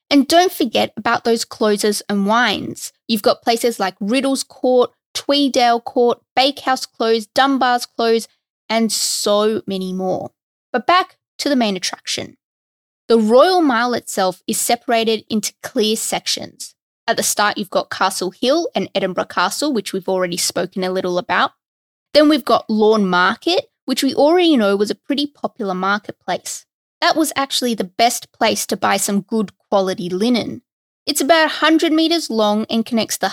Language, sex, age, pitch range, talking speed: English, female, 20-39, 205-280 Hz, 160 wpm